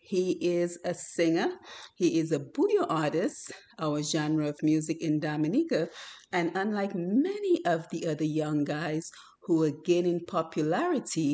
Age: 30-49